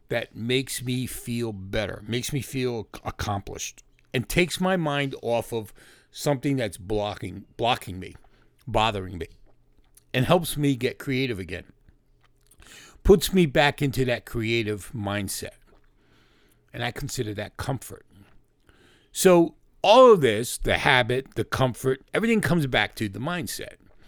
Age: 50-69